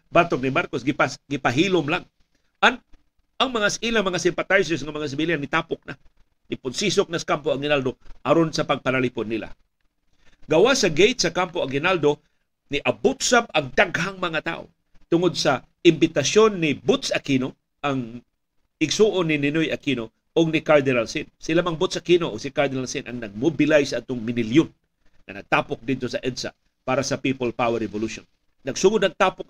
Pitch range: 140-175 Hz